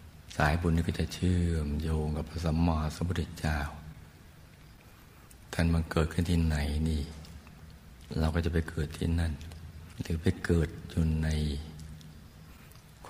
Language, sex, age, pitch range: Thai, male, 60-79, 75-85 Hz